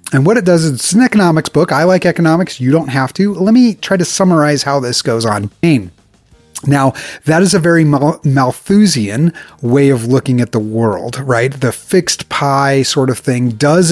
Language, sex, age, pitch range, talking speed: English, male, 30-49, 120-160 Hz, 195 wpm